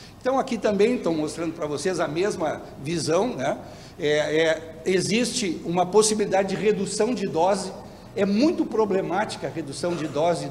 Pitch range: 155-210 Hz